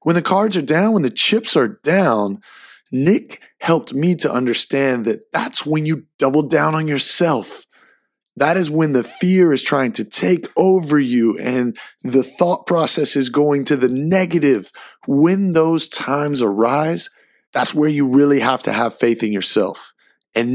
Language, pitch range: English, 115-155 Hz